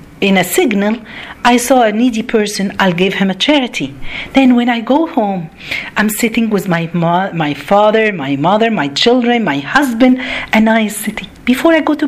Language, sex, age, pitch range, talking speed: Arabic, female, 50-69, 165-255 Hz, 190 wpm